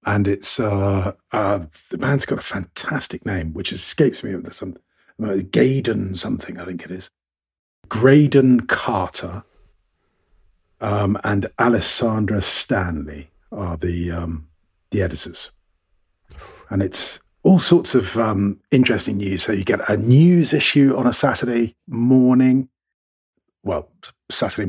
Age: 50-69